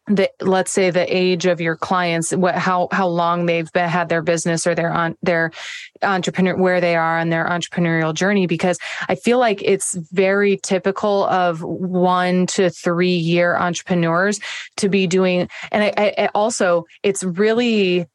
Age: 20-39